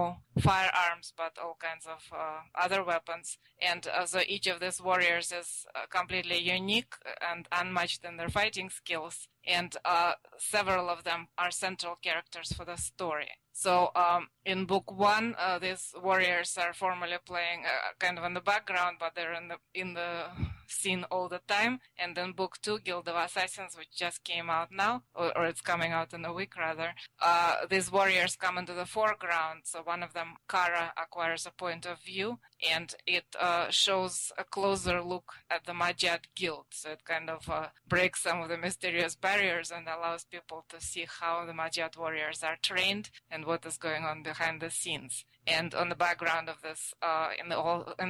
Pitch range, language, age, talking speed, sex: 165-180 Hz, English, 20-39, 185 wpm, female